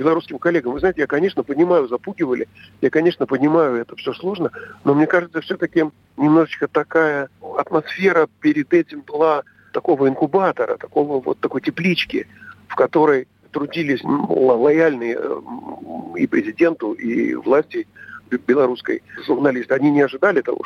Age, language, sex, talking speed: 50-69, Russian, male, 130 wpm